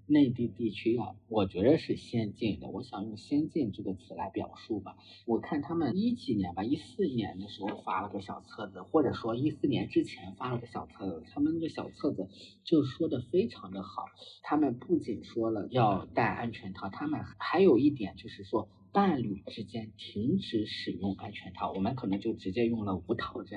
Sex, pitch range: male, 100-140 Hz